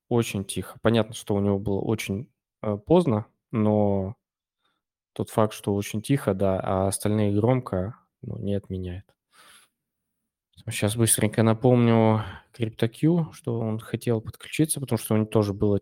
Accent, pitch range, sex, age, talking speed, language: native, 100-115 Hz, male, 20-39, 140 wpm, Russian